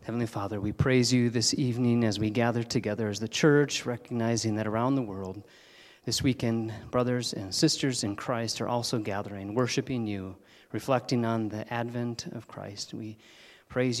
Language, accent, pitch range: English, American, 110-135 Hz